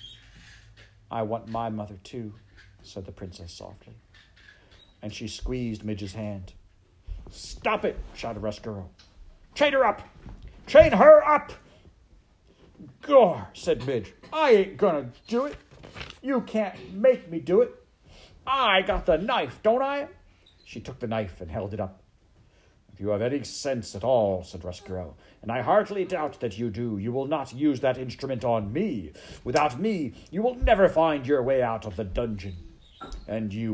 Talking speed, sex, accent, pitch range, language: 160 wpm, male, American, 95-130 Hz, English